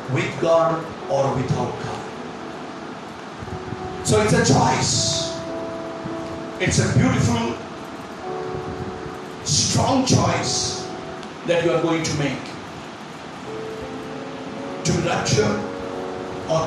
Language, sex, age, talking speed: English, male, 50-69, 85 wpm